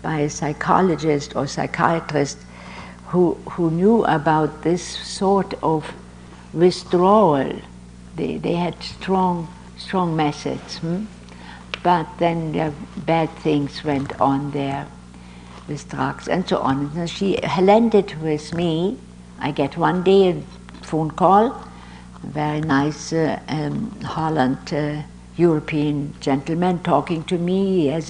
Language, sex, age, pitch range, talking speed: English, female, 60-79, 140-175 Hz, 125 wpm